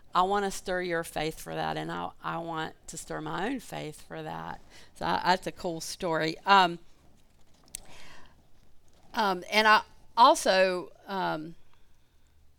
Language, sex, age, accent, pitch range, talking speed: English, female, 50-69, American, 170-205 Hz, 145 wpm